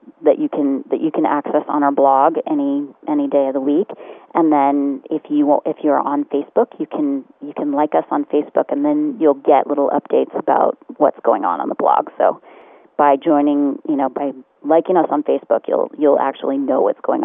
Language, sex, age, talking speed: English, female, 40-59, 210 wpm